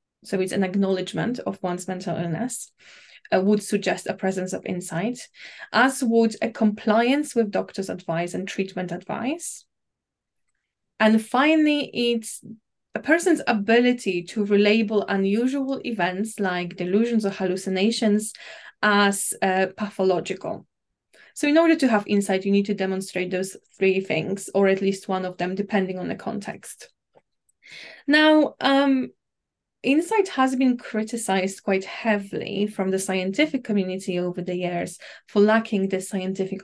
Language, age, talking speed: English, 20-39, 140 wpm